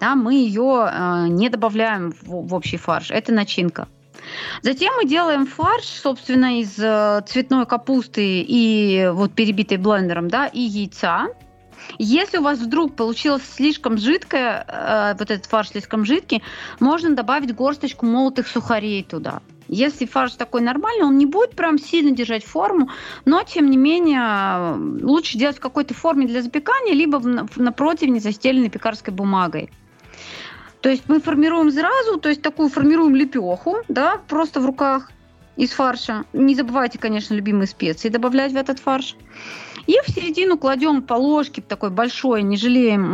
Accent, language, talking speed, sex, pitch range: native, Russian, 150 wpm, female, 215-295 Hz